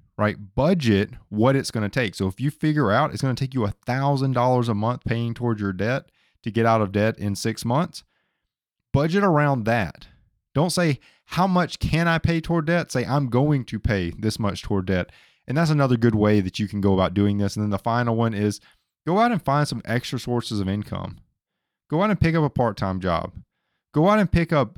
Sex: male